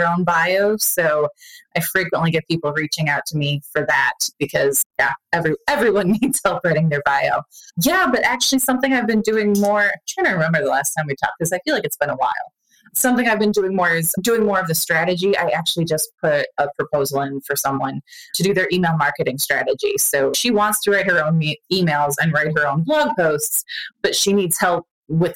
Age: 20-39